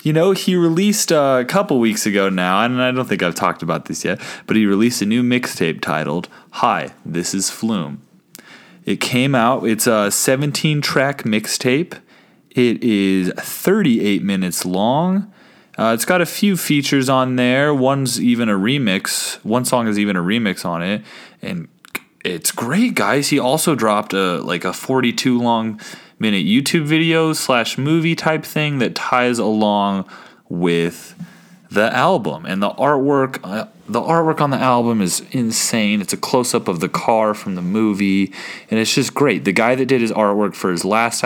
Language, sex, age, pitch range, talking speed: English, male, 20-39, 105-150 Hz, 175 wpm